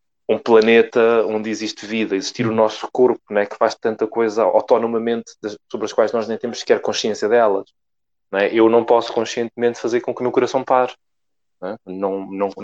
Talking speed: 180 wpm